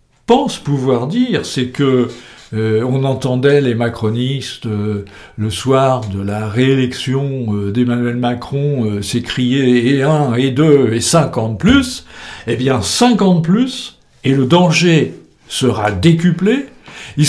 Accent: French